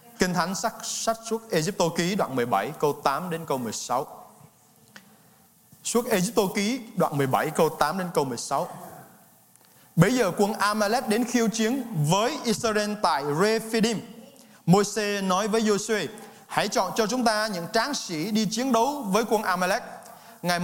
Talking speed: 155 wpm